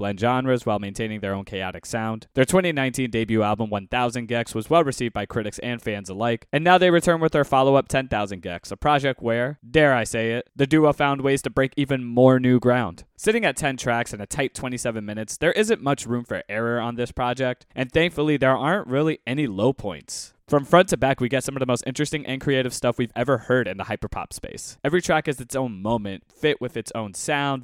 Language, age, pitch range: English, 20-39, 110-140 Hz